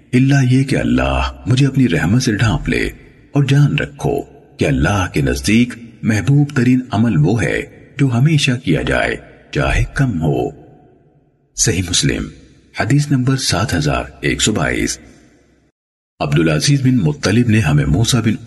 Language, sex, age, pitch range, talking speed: Urdu, male, 50-69, 110-140 Hz, 135 wpm